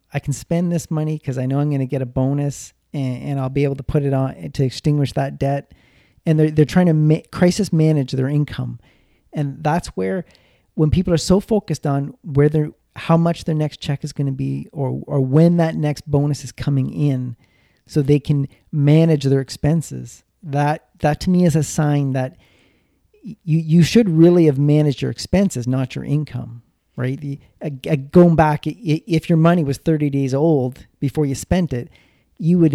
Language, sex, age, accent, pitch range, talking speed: English, male, 40-59, American, 140-165 Hz, 200 wpm